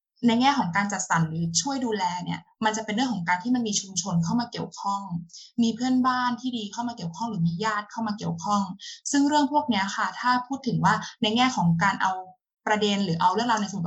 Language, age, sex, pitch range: Thai, 20-39, female, 180-240 Hz